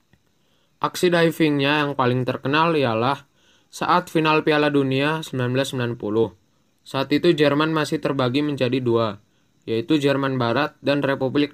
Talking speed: 120 wpm